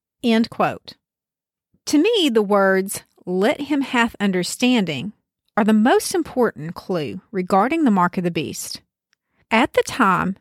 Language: English